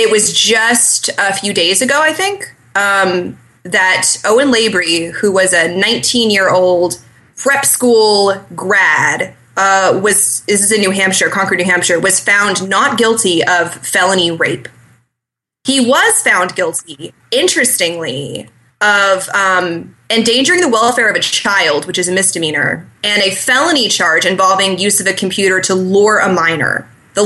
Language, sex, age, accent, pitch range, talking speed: English, female, 20-39, American, 180-225 Hz, 155 wpm